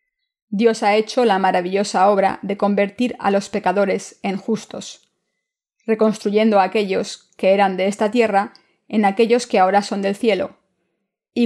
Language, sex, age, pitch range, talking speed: Spanish, female, 20-39, 195-225 Hz, 150 wpm